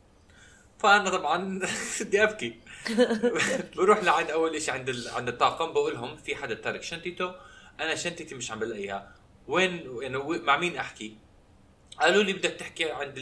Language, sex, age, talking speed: Arabic, male, 20-39, 155 wpm